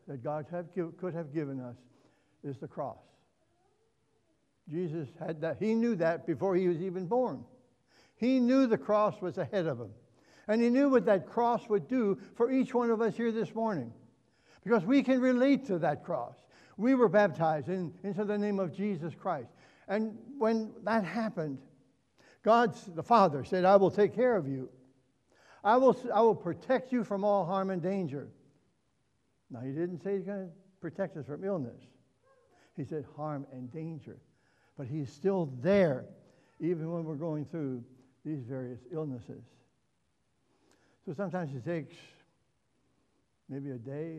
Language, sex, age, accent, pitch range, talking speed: English, male, 60-79, American, 145-205 Hz, 160 wpm